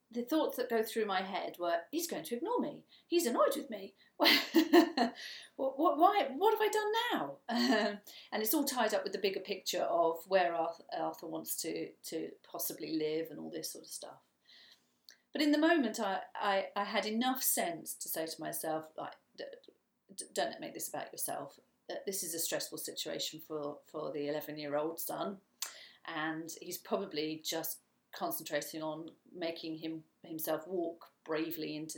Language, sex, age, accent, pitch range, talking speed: English, female, 40-59, British, 150-215 Hz, 175 wpm